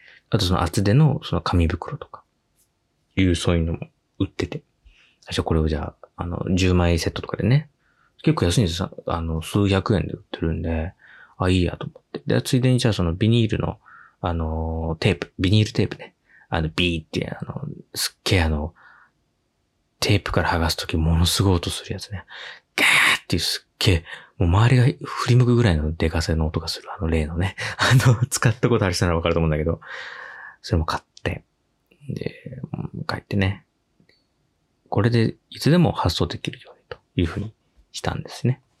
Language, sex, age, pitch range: Japanese, male, 20-39, 85-120 Hz